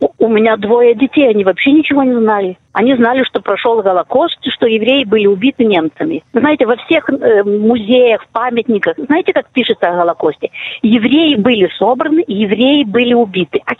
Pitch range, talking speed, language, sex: 200-265 Hz, 155 wpm, Russian, female